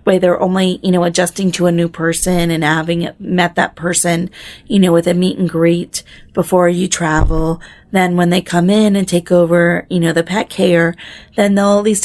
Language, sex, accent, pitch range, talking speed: English, female, American, 175-220 Hz, 210 wpm